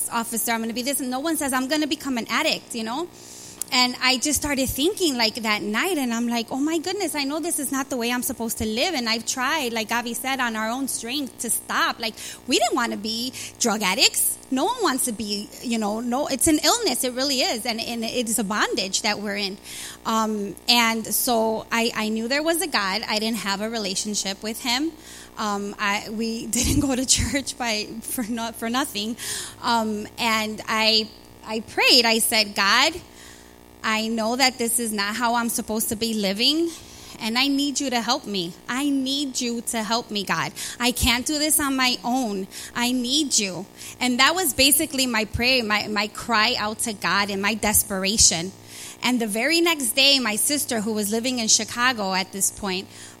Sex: female